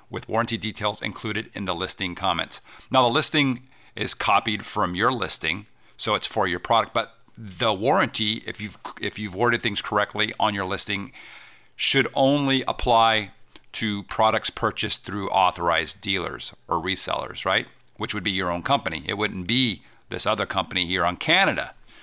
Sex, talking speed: male, 165 wpm